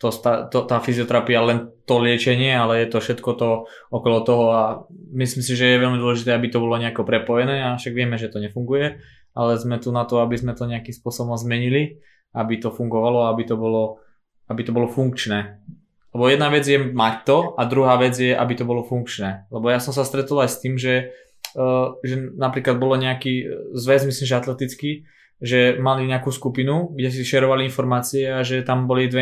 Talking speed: 195 wpm